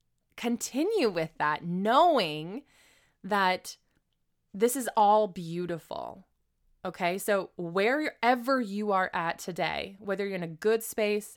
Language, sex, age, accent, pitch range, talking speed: English, female, 20-39, American, 165-220 Hz, 115 wpm